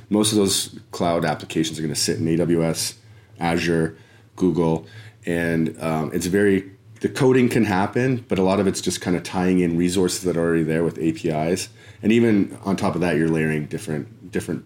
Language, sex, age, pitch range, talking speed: English, male, 30-49, 80-105 Hz, 190 wpm